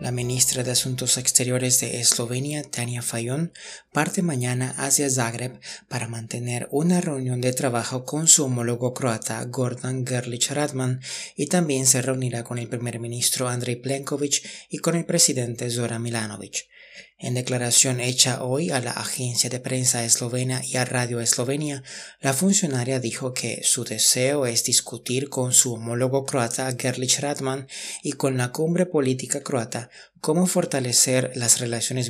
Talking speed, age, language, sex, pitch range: 150 wpm, 30-49, Spanish, male, 120-135 Hz